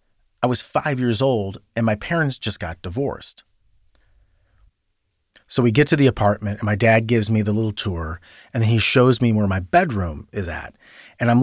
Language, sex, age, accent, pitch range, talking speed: English, male, 30-49, American, 100-130 Hz, 195 wpm